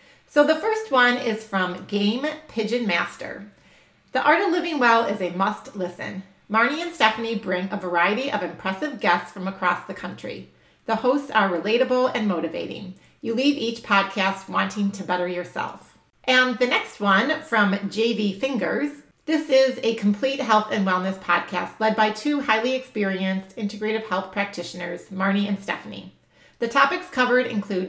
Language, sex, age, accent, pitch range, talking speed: English, female, 40-59, American, 190-240 Hz, 160 wpm